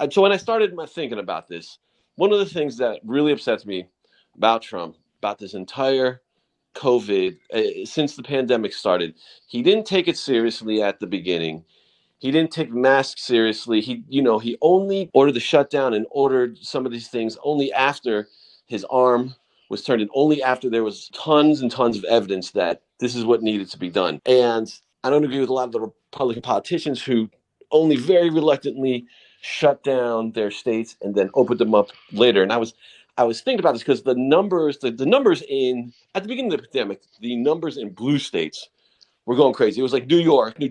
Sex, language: male, English